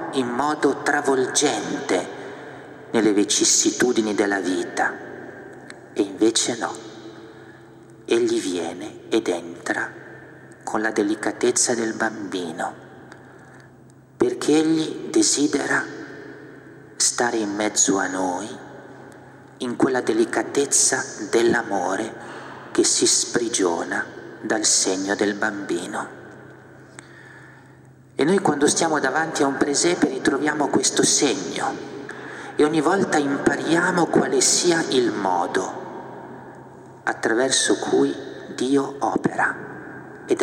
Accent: native